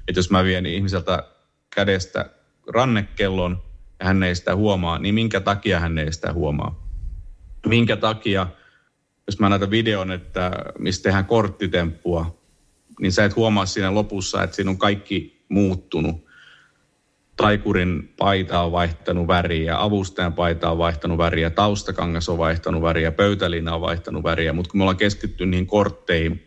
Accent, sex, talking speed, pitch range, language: native, male, 145 wpm, 85-100 Hz, Finnish